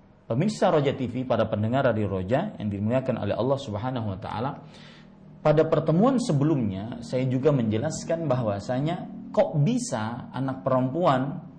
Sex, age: male, 40-59